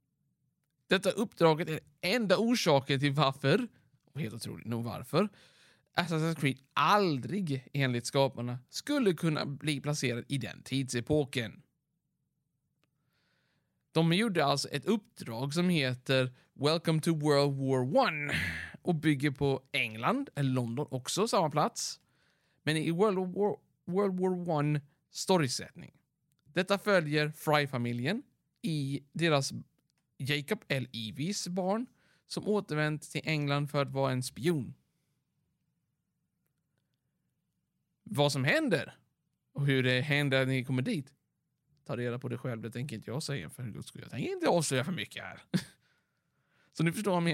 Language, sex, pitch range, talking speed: Swedish, male, 135-175 Hz, 140 wpm